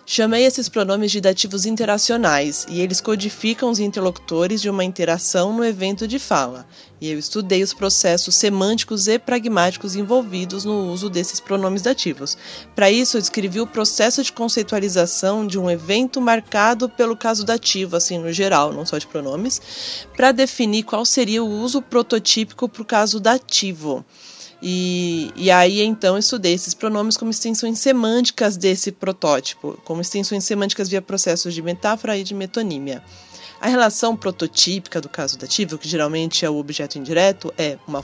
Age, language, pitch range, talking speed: 20-39, Portuguese, 175-225 Hz, 160 wpm